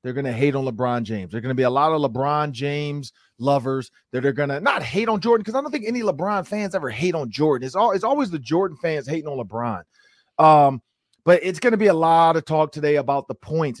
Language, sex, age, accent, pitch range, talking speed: English, male, 30-49, American, 135-190 Hz, 265 wpm